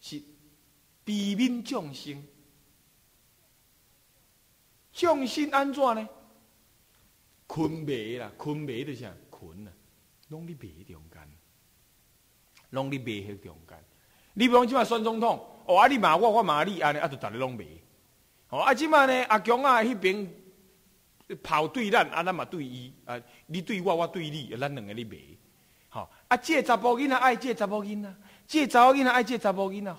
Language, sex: Chinese, male